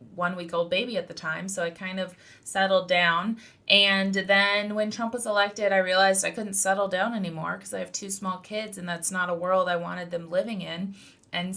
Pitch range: 180-215 Hz